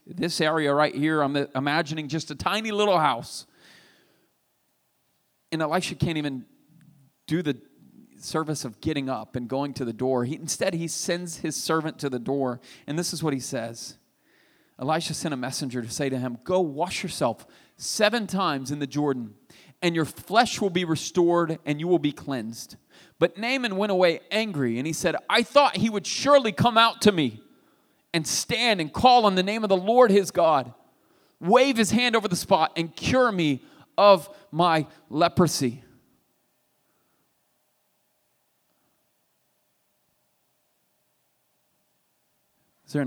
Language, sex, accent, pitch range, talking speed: English, male, American, 135-185 Hz, 155 wpm